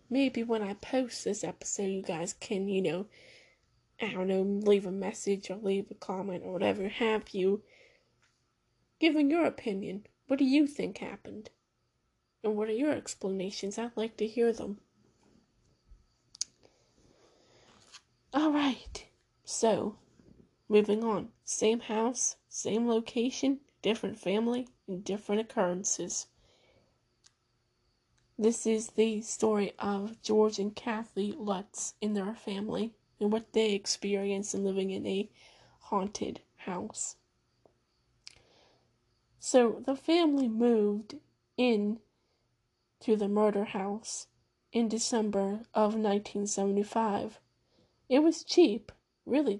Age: 10-29